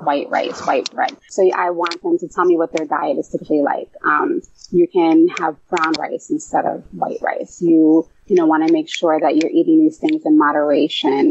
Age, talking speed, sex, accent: 30-49, 220 wpm, female, American